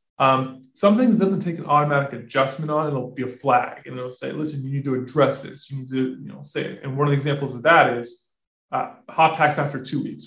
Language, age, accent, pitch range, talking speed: English, 20-39, American, 125-155 Hz, 255 wpm